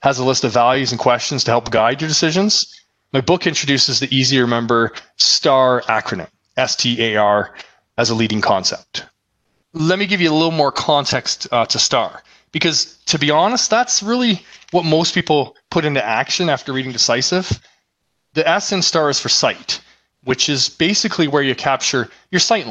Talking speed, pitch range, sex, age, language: 175 wpm, 125-160 Hz, male, 20-39, English